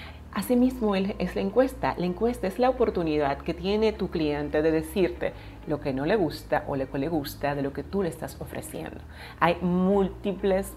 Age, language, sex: 30-49, Spanish, female